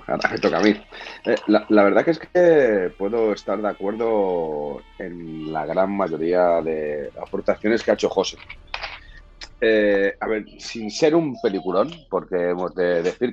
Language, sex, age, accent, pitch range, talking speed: Spanish, male, 30-49, Spanish, 80-115 Hz, 165 wpm